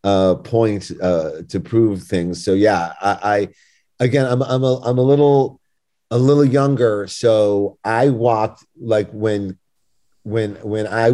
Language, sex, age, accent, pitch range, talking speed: English, male, 40-59, American, 95-115 Hz, 150 wpm